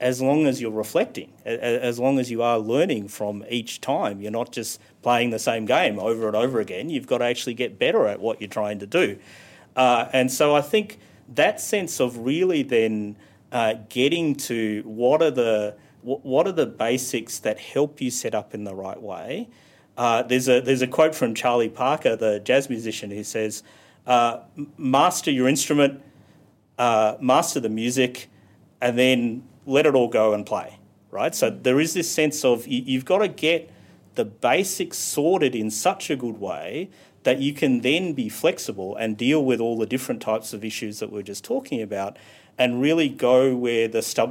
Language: English